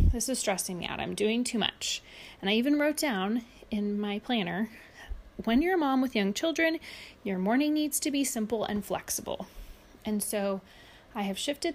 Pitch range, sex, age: 200-255 Hz, female, 30-49